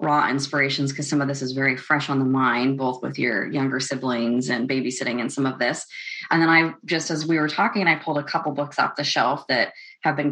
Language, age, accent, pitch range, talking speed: English, 30-49, American, 135-175 Hz, 245 wpm